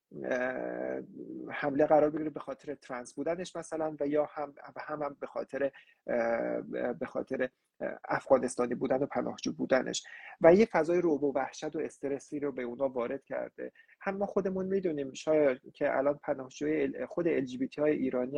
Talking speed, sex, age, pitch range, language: 160 wpm, male, 30-49, 130-160 Hz, English